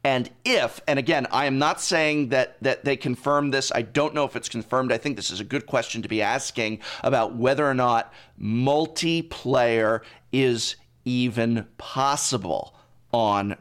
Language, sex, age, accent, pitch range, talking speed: English, male, 40-59, American, 115-145 Hz, 170 wpm